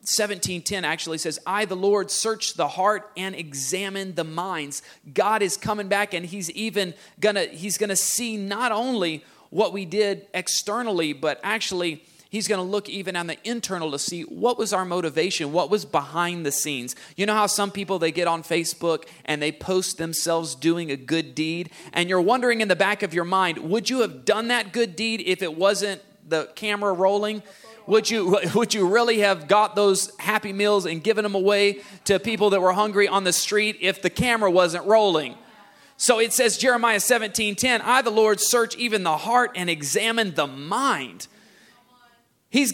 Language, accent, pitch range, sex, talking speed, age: English, American, 175-215 Hz, male, 190 wpm, 30-49